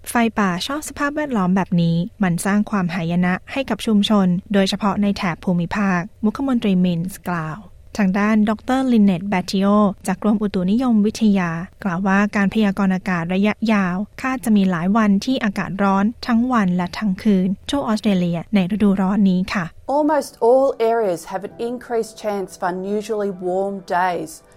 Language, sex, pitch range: Thai, female, 185-220 Hz